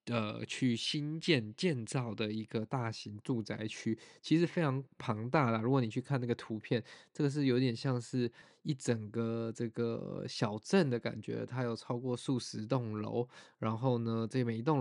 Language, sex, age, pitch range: Chinese, male, 20-39, 115-130 Hz